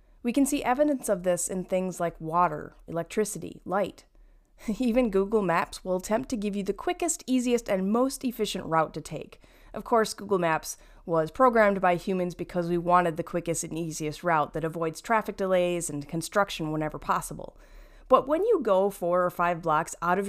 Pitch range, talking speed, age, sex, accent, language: 165-225 Hz, 185 wpm, 30-49, female, American, English